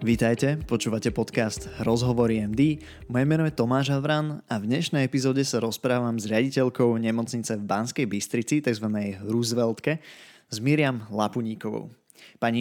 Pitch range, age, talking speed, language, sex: 115-135 Hz, 20-39, 135 wpm, Slovak, male